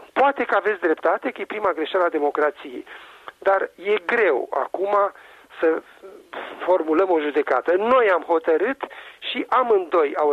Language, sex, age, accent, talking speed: Romanian, male, 40-59, native, 140 wpm